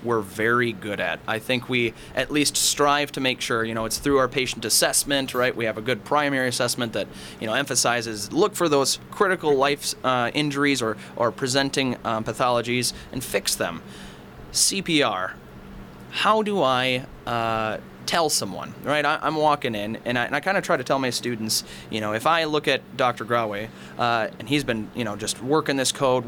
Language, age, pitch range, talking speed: English, 20-39, 115-145 Hz, 185 wpm